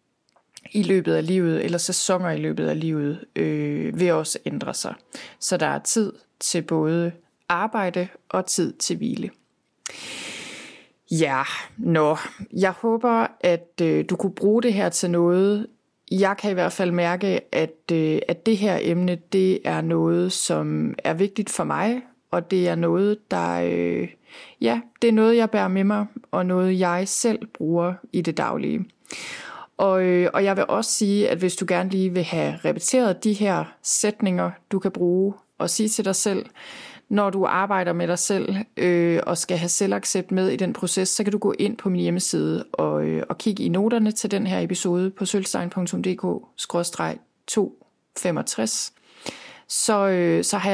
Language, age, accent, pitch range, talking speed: Danish, 30-49, native, 170-205 Hz, 170 wpm